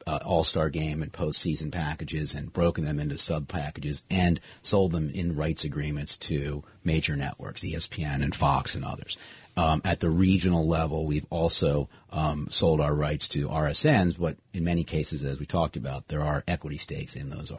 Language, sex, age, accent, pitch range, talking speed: English, male, 40-59, American, 75-90 Hz, 175 wpm